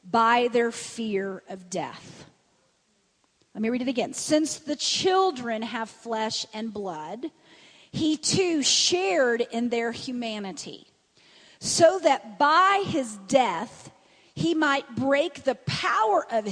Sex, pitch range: female, 220-300 Hz